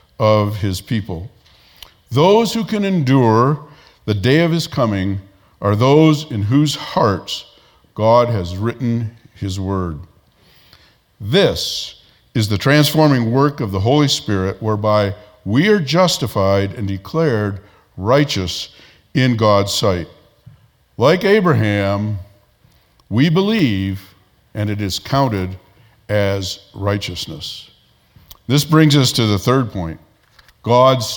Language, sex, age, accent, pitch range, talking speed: English, male, 50-69, American, 100-145 Hz, 115 wpm